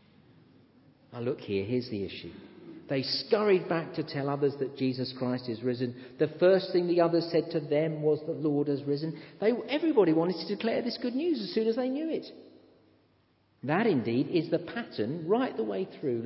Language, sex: English, male